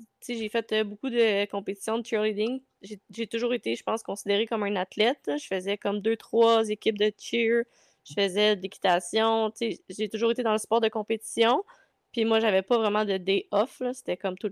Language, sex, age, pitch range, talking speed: French, female, 20-39, 200-230 Hz, 205 wpm